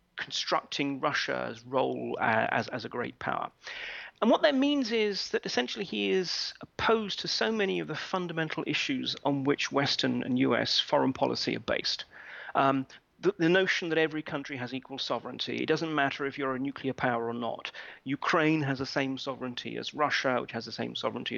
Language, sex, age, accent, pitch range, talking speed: English, male, 40-59, British, 140-180 Hz, 180 wpm